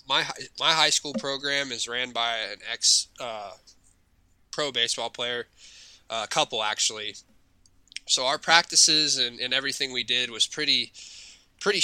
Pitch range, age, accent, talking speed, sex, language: 115-135 Hz, 20-39, American, 145 wpm, male, English